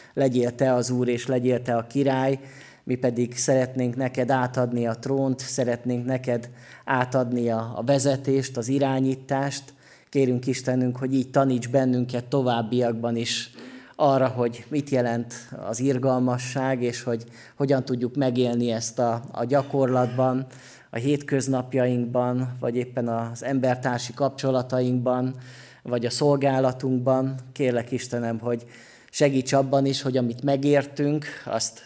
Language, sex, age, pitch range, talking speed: Hungarian, male, 30-49, 125-145 Hz, 120 wpm